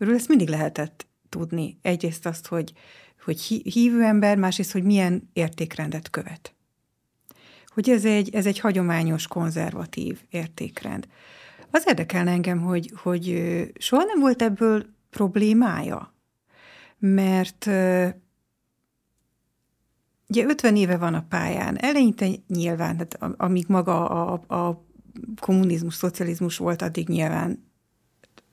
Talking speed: 110 wpm